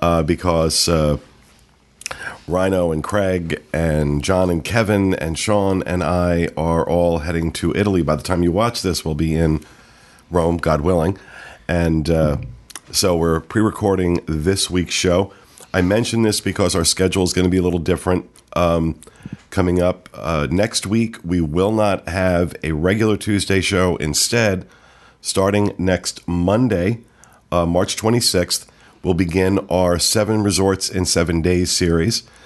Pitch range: 80-95 Hz